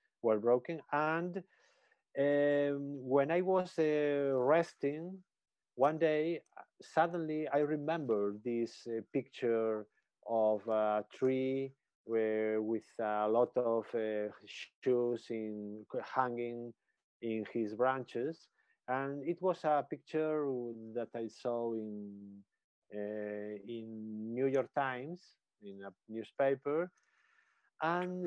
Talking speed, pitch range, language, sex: 105 wpm, 115-165 Hz, Turkish, male